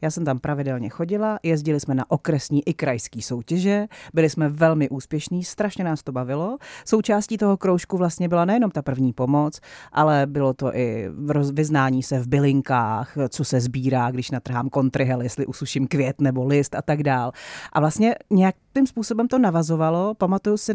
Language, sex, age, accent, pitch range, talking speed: Czech, female, 40-59, native, 140-180 Hz, 170 wpm